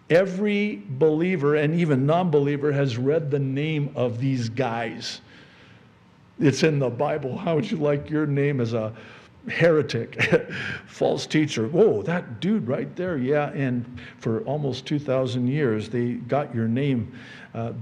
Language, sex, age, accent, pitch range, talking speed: English, male, 50-69, American, 115-145 Hz, 145 wpm